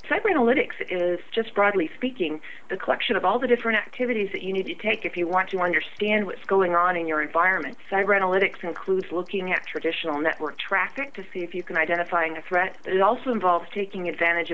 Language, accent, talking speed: English, American, 210 wpm